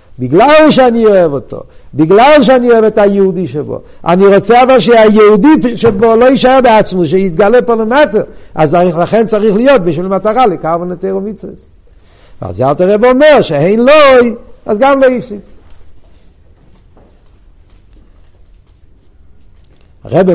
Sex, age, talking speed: male, 60-79, 125 wpm